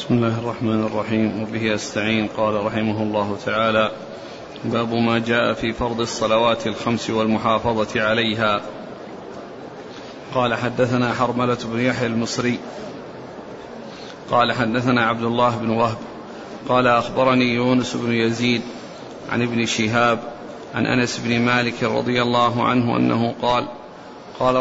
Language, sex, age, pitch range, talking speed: Arabic, male, 40-59, 115-130 Hz, 120 wpm